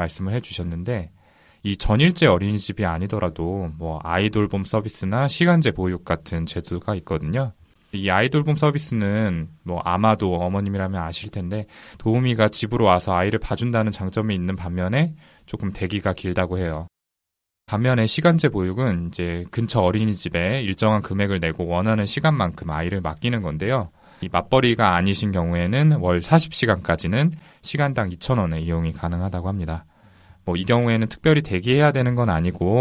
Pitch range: 90-120 Hz